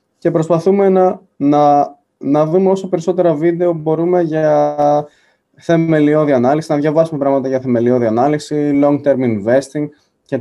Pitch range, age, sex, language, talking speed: 130-170 Hz, 20-39, male, Greek, 125 wpm